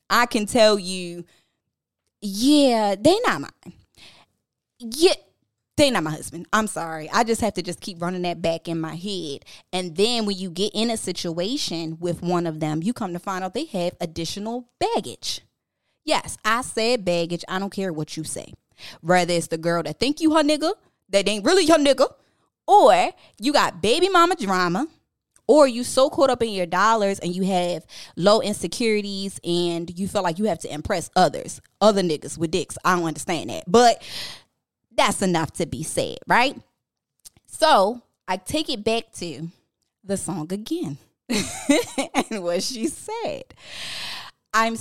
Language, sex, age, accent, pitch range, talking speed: English, female, 20-39, American, 175-245 Hz, 175 wpm